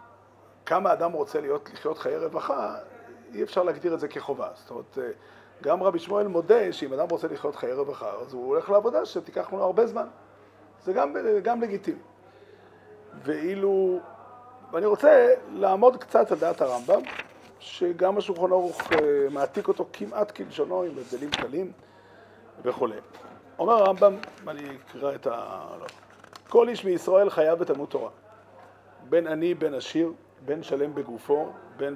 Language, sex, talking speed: Hebrew, male, 145 wpm